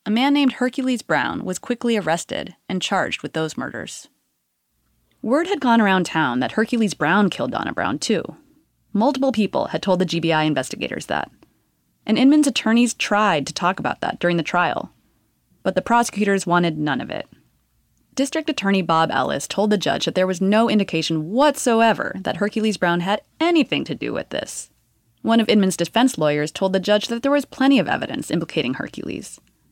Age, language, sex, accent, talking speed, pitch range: 20-39, English, female, American, 180 wpm, 175-245 Hz